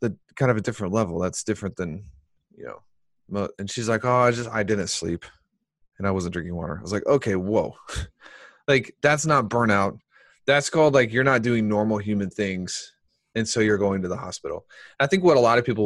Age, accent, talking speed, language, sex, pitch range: 20-39, American, 215 wpm, English, male, 105-135 Hz